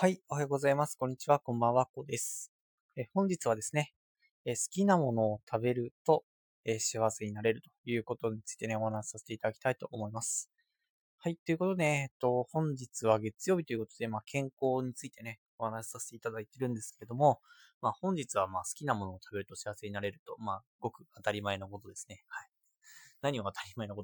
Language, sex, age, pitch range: Japanese, male, 20-39, 105-165 Hz